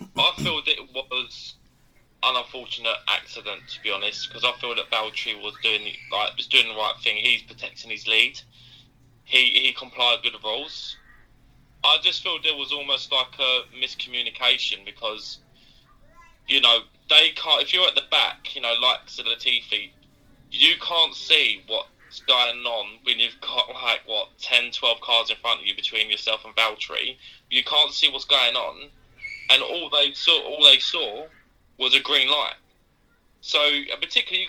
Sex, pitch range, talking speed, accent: male, 120-150 Hz, 170 wpm, British